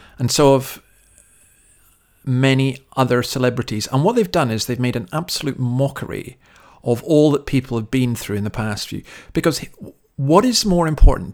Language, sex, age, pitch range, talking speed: English, male, 50-69, 120-145 Hz, 170 wpm